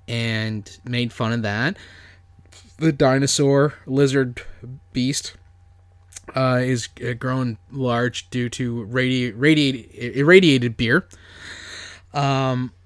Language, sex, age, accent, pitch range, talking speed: English, male, 20-39, American, 105-135 Hz, 85 wpm